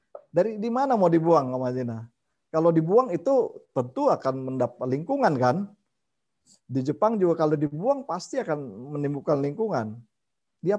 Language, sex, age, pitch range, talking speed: Indonesian, male, 50-69, 125-195 Hz, 140 wpm